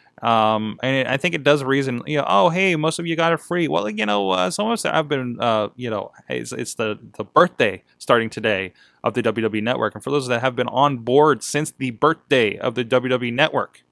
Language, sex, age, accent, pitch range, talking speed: English, male, 20-39, American, 105-145 Hz, 235 wpm